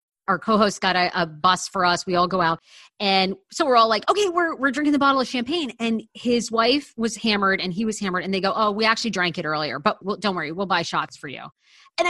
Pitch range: 190-260 Hz